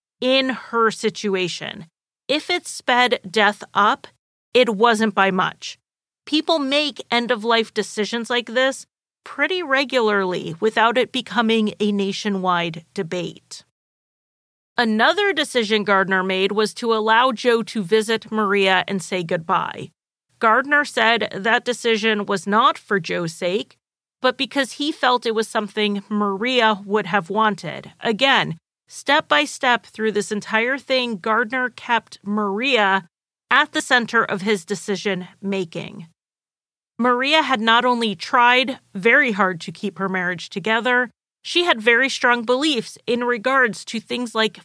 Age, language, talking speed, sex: 40-59, English, 135 wpm, female